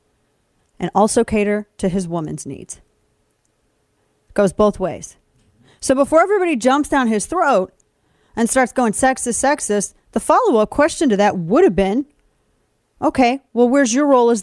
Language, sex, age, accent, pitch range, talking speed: English, female, 30-49, American, 210-280 Hz, 155 wpm